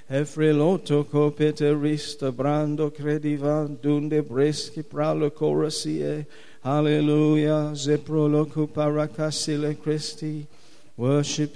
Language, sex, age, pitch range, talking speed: English, male, 50-69, 150-155 Hz, 80 wpm